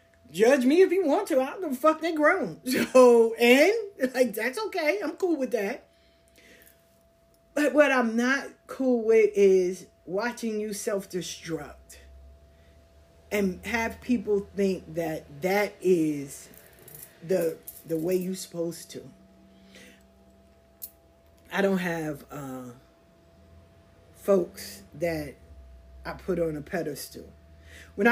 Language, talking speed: English, 120 wpm